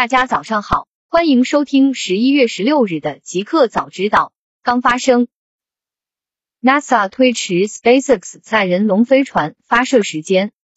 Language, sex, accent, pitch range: Chinese, female, native, 195-260 Hz